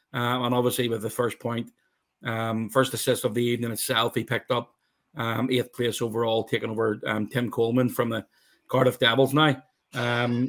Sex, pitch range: male, 115-130 Hz